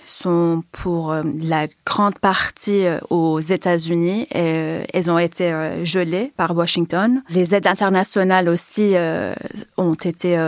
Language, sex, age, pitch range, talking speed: French, female, 30-49, 170-205 Hz, 115 wpm